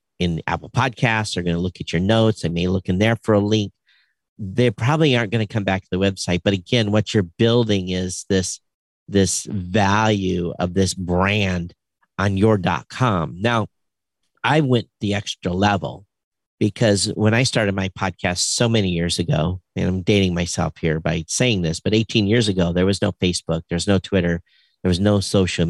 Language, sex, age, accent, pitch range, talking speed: English, male, 50-69, American, 90-110 Hz, 190 wpm